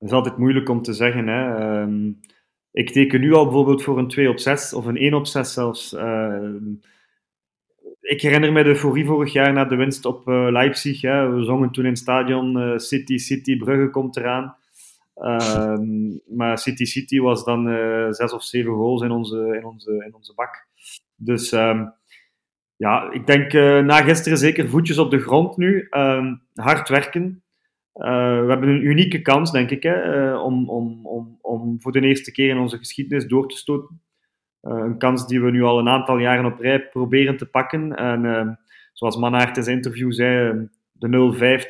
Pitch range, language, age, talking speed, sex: 120-140 Hz, Dutch, 30-49, 175 wpm, male